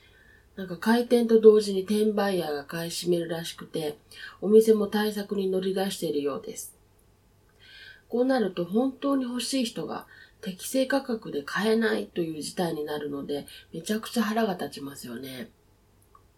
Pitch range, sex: 160-225 Hz, female